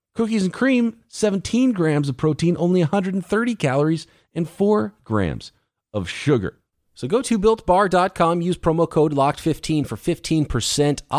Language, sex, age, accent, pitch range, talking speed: English, male, 40-59, American, 110-165 Hz, 135 wpm